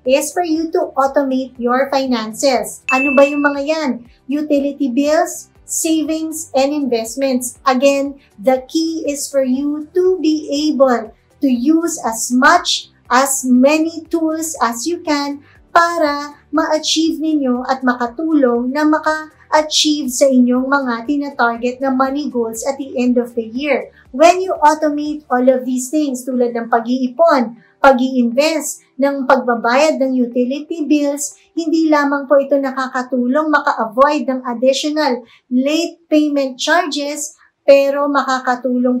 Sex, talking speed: male, 130 wpm